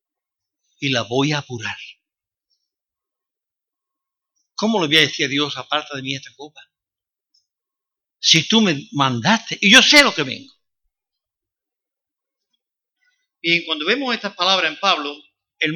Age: 60-79